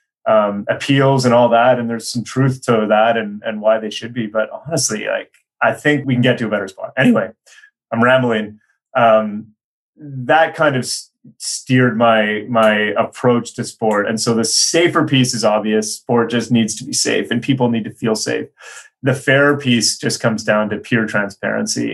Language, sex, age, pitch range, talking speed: English, male, 30-49, 110-135 Hz, 195 wpm